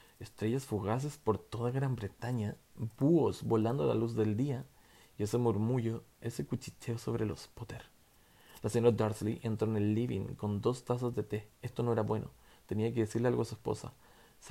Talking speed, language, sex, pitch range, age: 185 wpm, Spanish, male, 105-120 Hz, 20-39